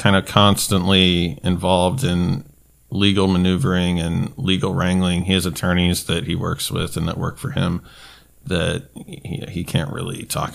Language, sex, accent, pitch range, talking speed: English, male, American, 90-110 Hz, 160 wpm